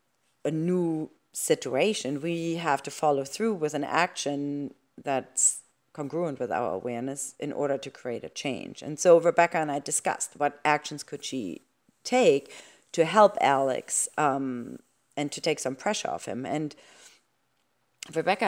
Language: English